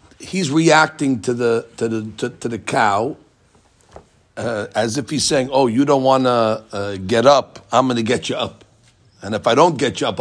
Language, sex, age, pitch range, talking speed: English, male, 60-79, 110-155 Hz, 210 wpm